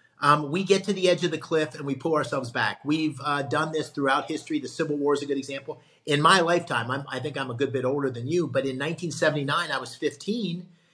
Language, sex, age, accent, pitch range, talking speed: English, male, 40-59, American, 130-155 Hz, 250 wpm